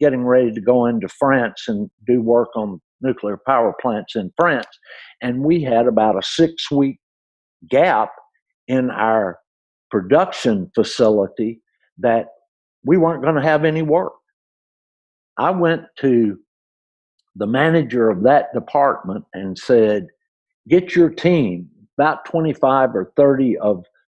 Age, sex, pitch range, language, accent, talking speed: 60-79, male, 110-155 Hz, English, American, 130 wpm